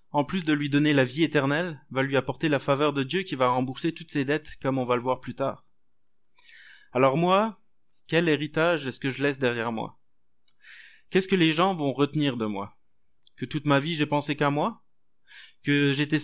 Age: 20-39